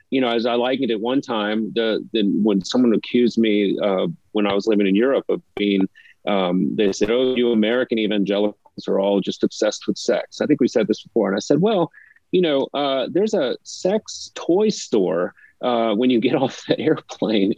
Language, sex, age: English, male, 30-49